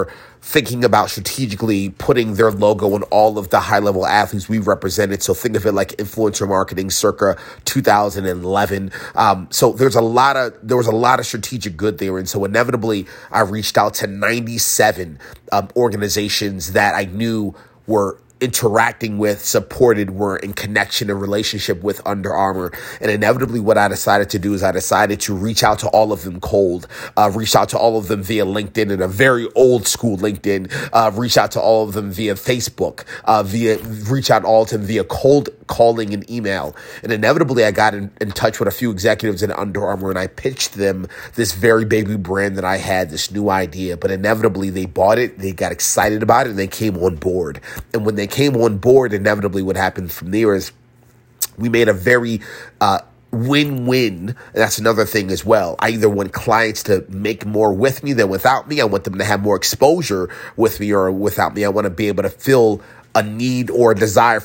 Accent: American